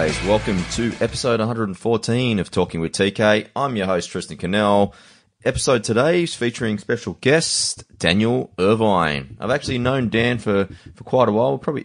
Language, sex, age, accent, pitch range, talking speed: English, male, 20-39, Australian, 85-105 Hz, 160 wpm